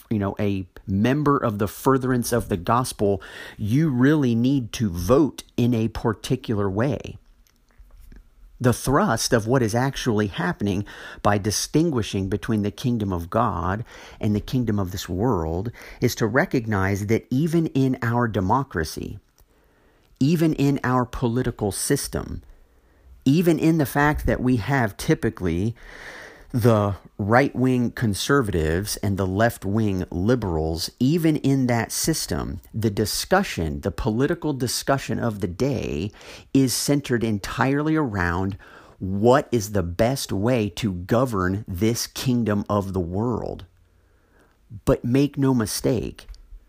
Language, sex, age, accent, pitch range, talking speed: English, male, 50-69, American, 95-125 Hz, 125 wpm